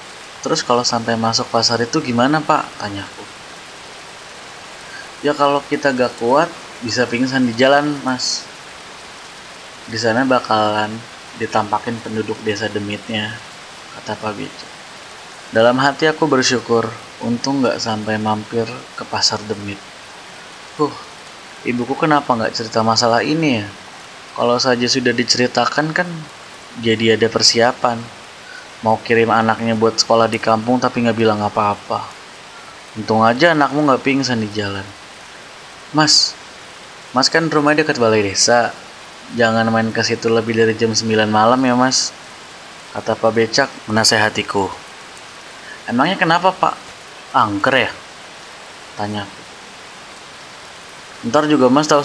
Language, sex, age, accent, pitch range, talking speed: Indonesian, male, 20-39, native, 110-130 Hz, 120 wpm